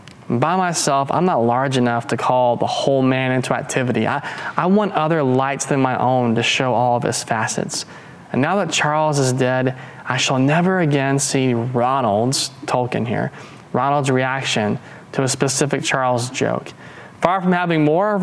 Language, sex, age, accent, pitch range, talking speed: English, male, 20-39, American, 125-150 Hz, 175 wpm